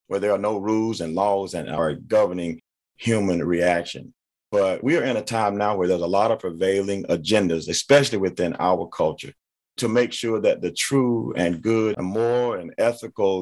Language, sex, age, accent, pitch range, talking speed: English, male, 40-59, American, 100-140 Hz, 190 wpm